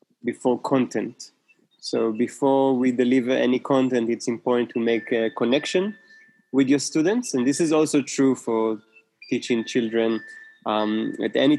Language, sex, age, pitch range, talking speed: English, male, 20-39, 110-130 Hz, 145 wpm